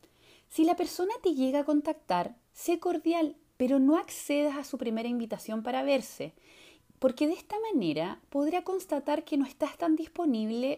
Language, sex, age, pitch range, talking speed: Spanish, female, 20-39, 260-330 Hz, 160 wpm